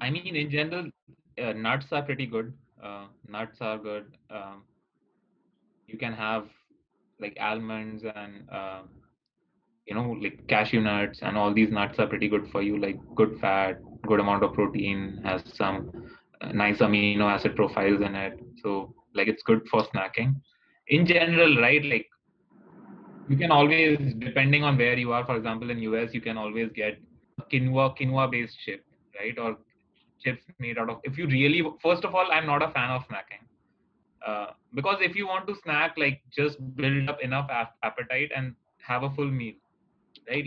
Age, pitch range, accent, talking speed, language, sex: 20-39, 110-145 Hz, native, 175 wpm, Hindi, male